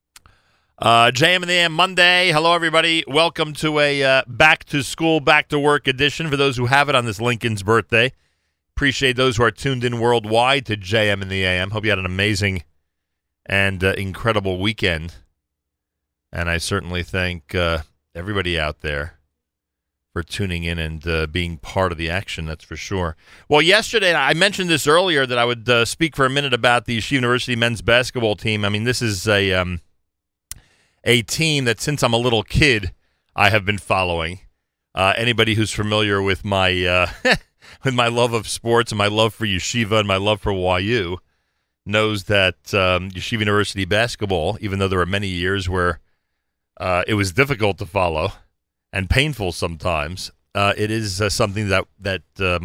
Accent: American